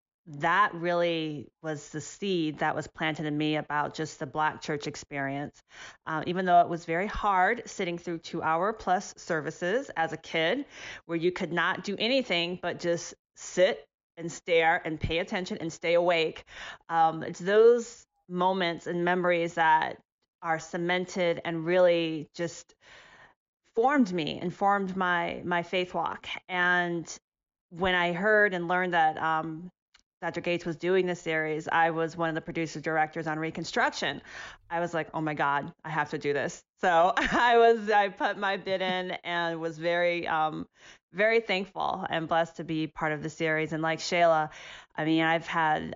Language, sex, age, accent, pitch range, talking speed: English, female, 30-49, American, 155-180 Hz, 170 wpm